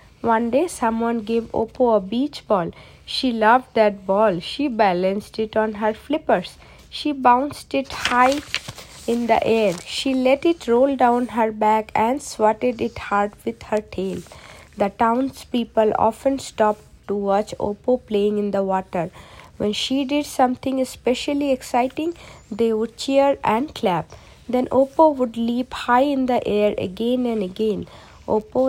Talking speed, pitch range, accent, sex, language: 155 wpm, 210-250 Hz, Indian, female, English